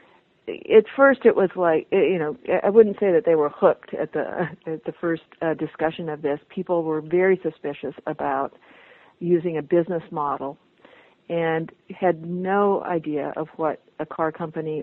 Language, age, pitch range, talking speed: English, 50-69, 155-185 Hz, 165 wpm